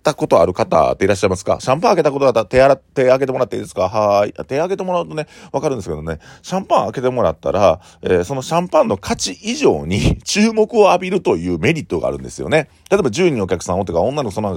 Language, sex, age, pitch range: Japanese, male, 40-59, 85-135 Hz